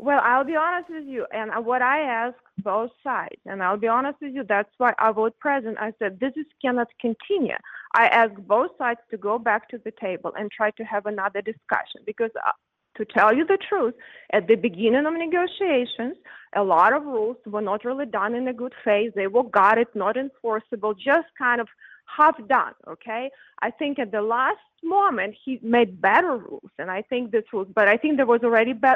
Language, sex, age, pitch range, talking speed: English, female, 30-49, 220-305 Hz, 215 wpm